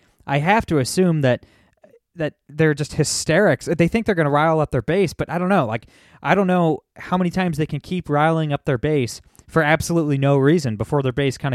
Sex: male